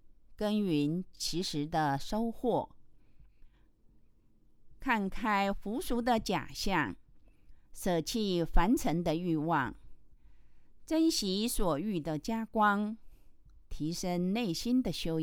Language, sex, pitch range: Chinese, female, 155-230 Hz